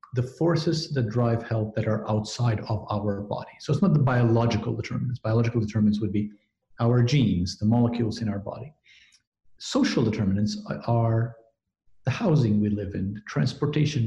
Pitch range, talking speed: 110-135 Hz, 160 wpm